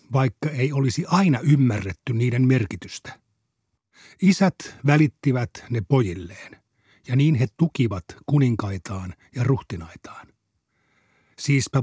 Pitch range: 110-145 Hz